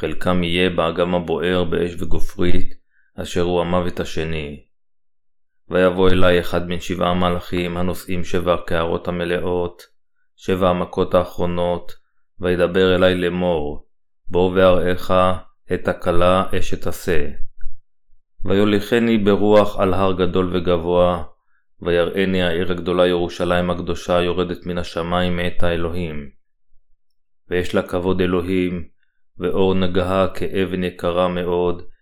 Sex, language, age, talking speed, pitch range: male, Hebrew, 20-39, 105 wpm, 85-95 Hz